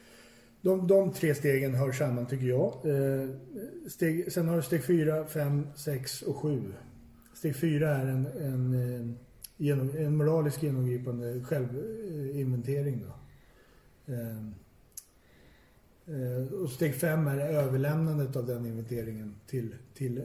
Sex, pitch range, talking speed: male, 125-150 Hz, 120 wpm